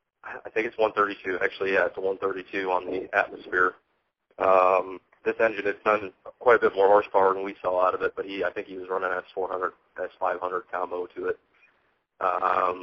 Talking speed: 195 wpm